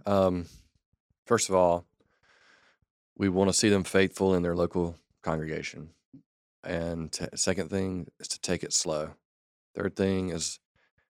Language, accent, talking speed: English, American, 135 wpm